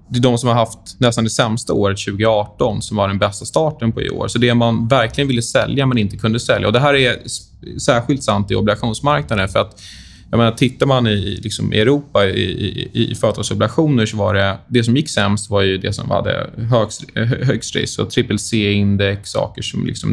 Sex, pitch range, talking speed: male, 105-130 Hz, 205 wpm